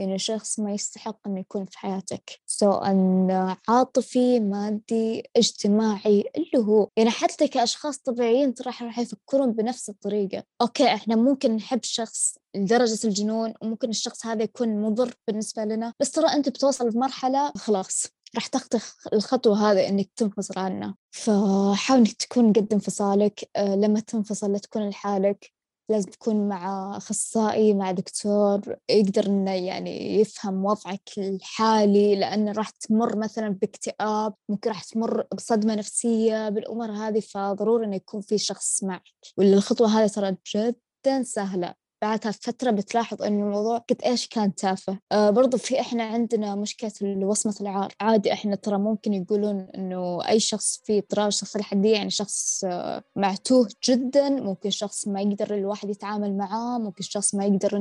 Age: 20-39